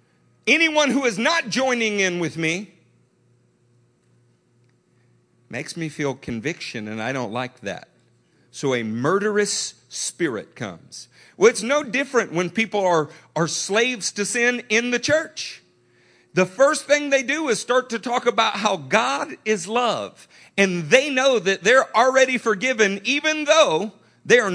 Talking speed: 150 wpm